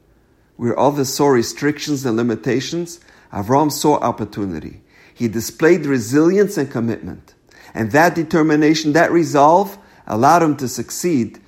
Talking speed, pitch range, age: 120 wpm, 105-150 Hz, 50-69